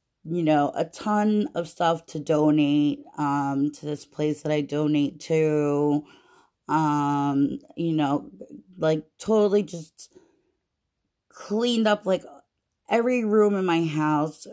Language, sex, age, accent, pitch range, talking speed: English, female, 30-49, American, 150-185 Hz, 125 wpm